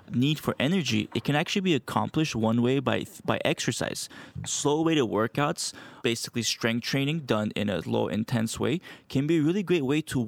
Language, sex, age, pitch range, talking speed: English, male, 20-39, 120-150 Hz, 185 wpm